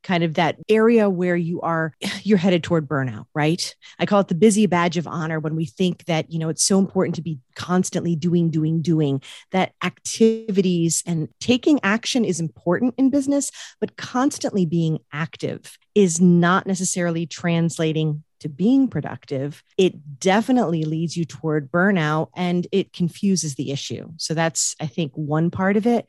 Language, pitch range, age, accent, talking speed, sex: English, 155-200 Hz, 40-59, American, 170 wpm, female